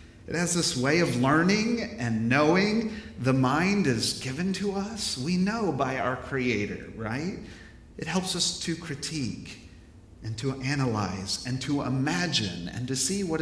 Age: 40-59